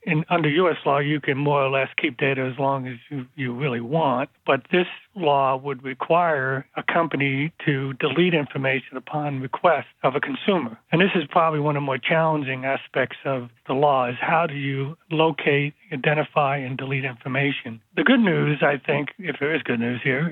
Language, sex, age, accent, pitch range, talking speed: English, male, 60-79, American, 135-160 Hz, 195 wpm